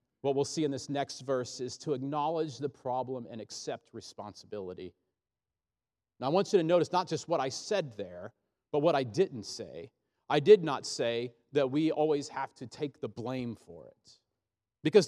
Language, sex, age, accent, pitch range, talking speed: English, male, 40-59, American, 145-215 Hz, 185 wpm